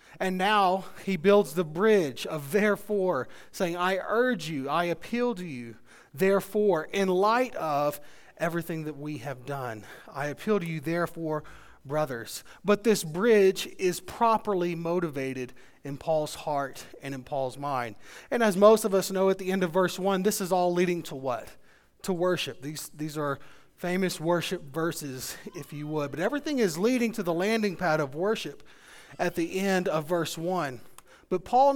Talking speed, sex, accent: 170 wpm, male, American